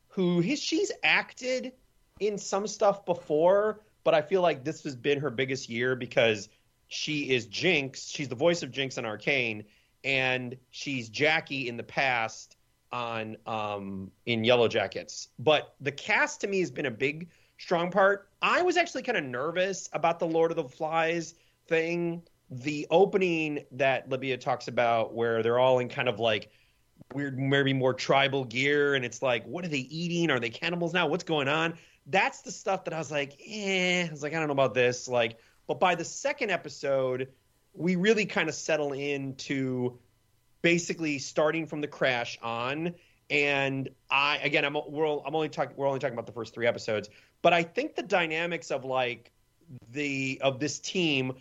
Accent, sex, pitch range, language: American, male, 125-170 Hz, English